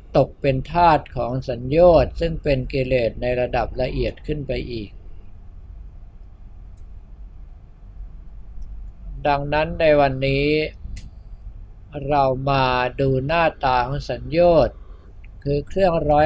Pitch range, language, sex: 95-140 Hz, Thai, male